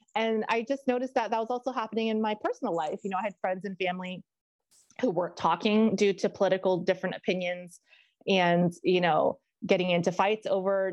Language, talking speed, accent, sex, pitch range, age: English, 190 wpm, American, female, 185-230 Hz, 20-39